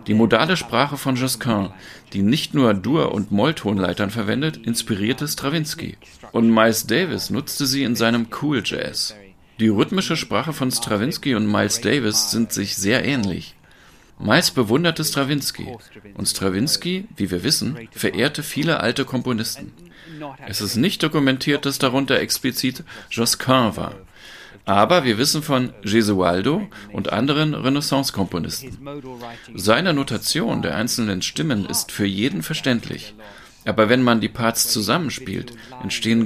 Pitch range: 105-140 Hz